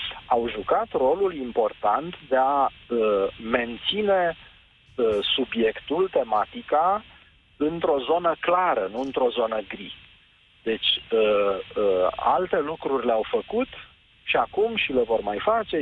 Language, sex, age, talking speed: Romanian, male, 40-59, 105 wpm